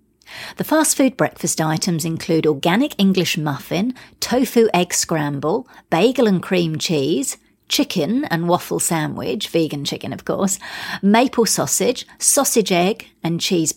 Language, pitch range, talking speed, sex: English, 165-225 Hz, 130 wpm, female